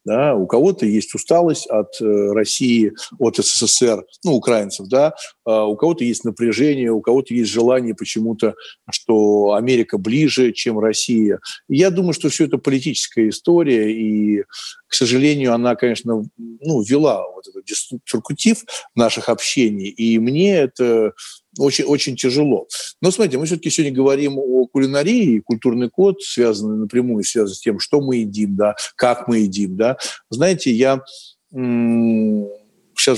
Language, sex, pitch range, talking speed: Russian, male, 110-150 Hz, 140 wpm